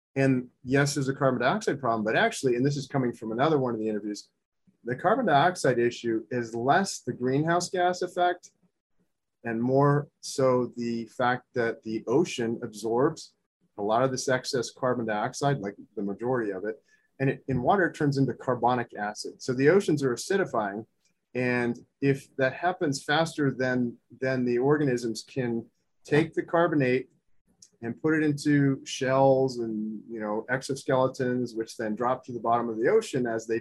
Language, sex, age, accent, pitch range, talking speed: English, male, 30-49, American, 120-140 Hz, 170 wpm